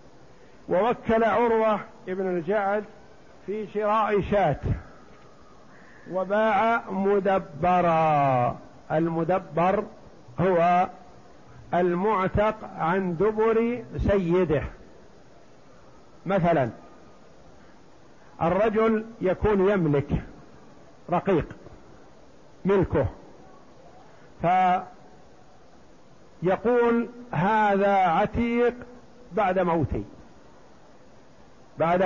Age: 50-69